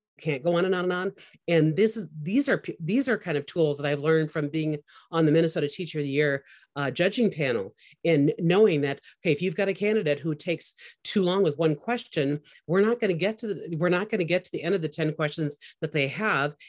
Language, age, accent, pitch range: English, 40-59, American, 150-180 Hz